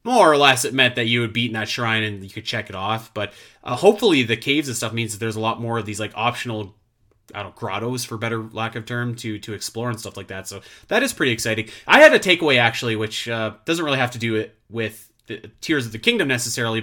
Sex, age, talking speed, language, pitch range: male, 30-49, 265 wpm, English, 110-130 Hz